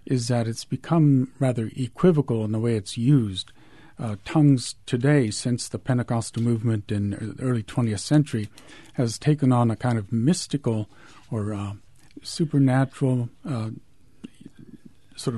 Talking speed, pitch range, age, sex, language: 135 wpm, 110-145 Hz, 50-69, male, English